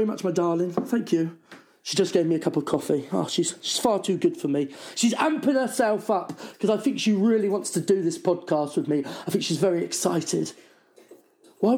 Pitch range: 195-295 Hz